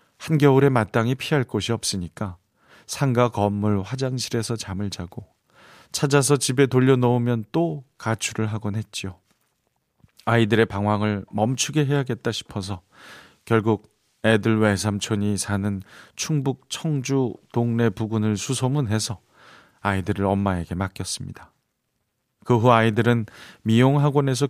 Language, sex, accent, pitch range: Korean, male, native, 105-130 Hz